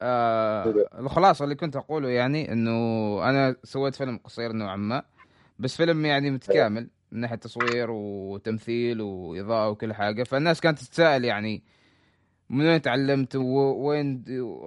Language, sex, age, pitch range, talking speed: Arabic, male, 20-39, 110-145 Hz, 130 wpm